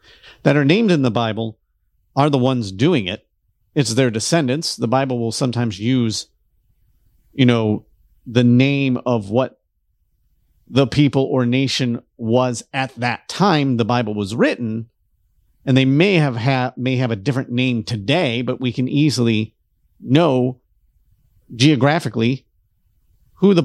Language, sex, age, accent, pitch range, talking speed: English, male, 50-69, American, 110-145 Hz, 140 wpm